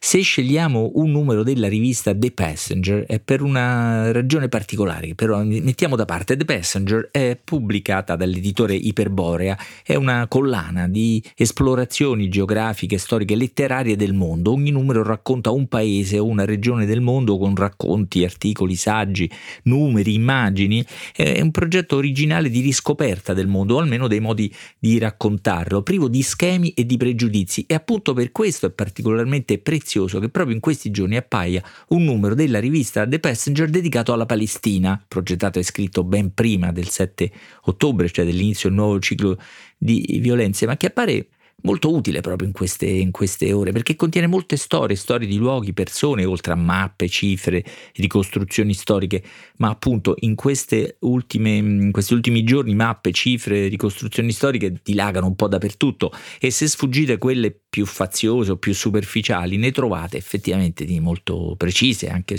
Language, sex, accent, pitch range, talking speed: Italian, male, native, 95-125 Hz, 160 wpm